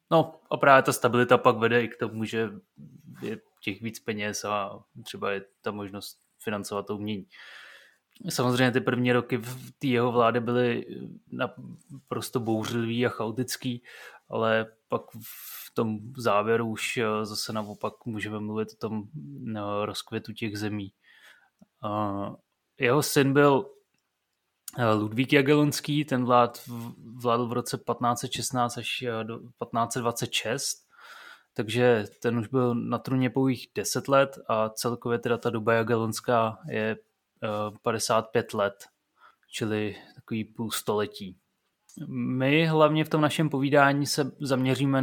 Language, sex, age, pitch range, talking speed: Czech, male, 20-39, 110-130 Hz, 125 wpm